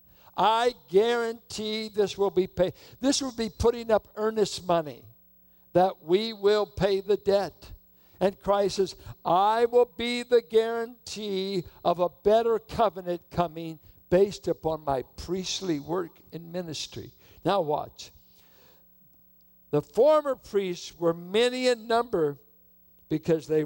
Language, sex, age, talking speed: English, male, 60-79, 125 wpm